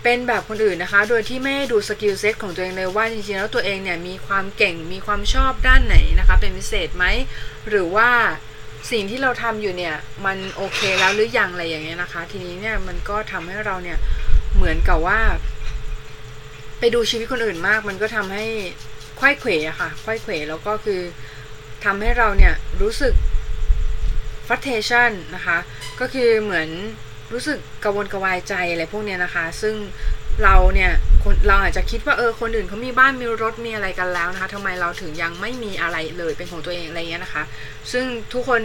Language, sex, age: Thai, female, 20-39